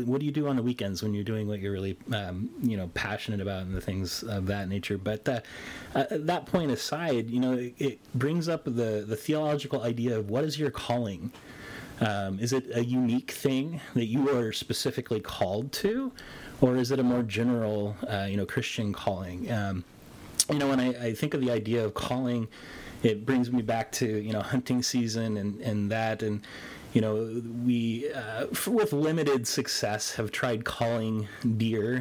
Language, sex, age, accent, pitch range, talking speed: English, male, 30-49, American, 105-125 Hz, 195 wpm